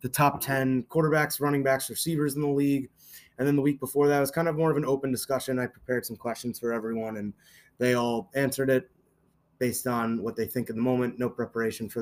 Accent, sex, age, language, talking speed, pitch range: American, male, 20-39, English, 235 wpm, 115-135 Hz